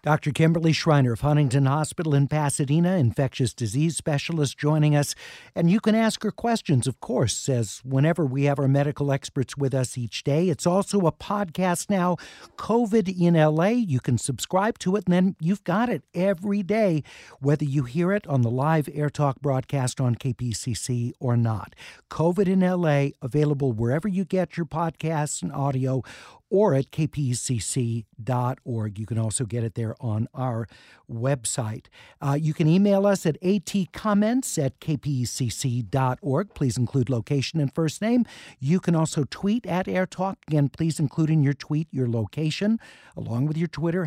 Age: 50-69